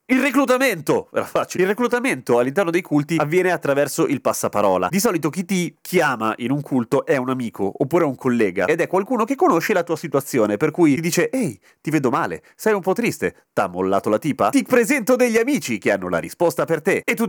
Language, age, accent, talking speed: Italian, 30-49, native, 220 wpm